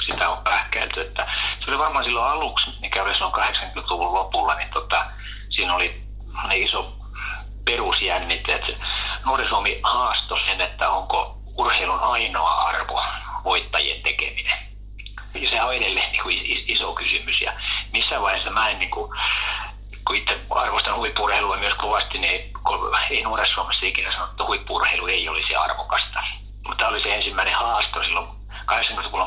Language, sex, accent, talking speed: Finnish, male, native, 135 wpm